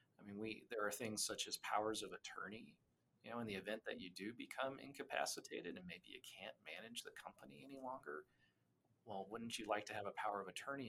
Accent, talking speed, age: American, 220 wpm, 40-59